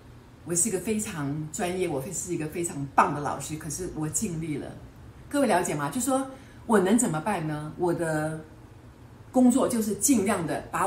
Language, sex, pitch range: Chinese, female, 130-190 Hz